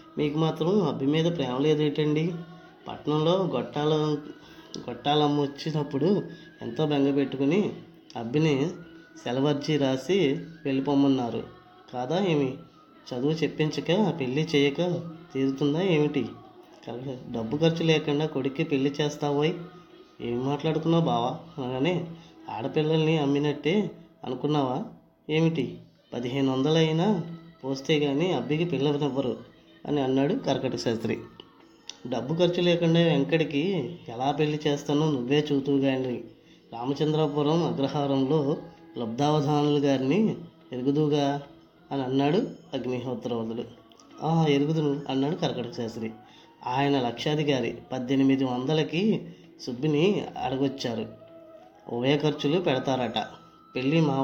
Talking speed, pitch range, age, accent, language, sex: 90 wpm, 135-160 Hz, 20-39, native, Telugu, female